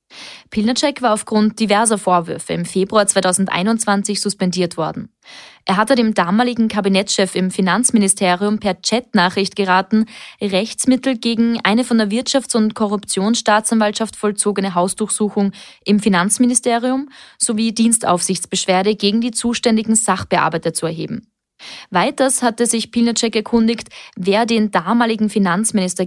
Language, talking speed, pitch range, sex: German, 115 wpm, 190-230 Hz, female